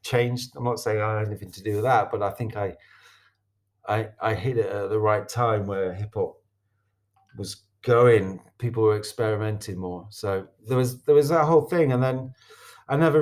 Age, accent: 40-59, British